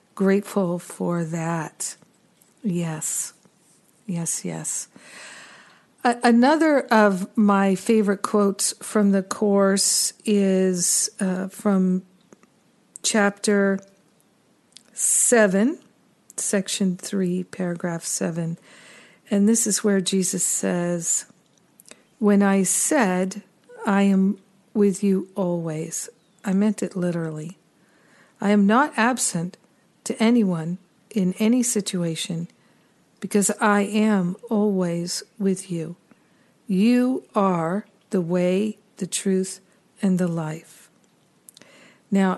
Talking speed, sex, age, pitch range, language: 95 wpm, female, 50-69, 185-215 Hz, English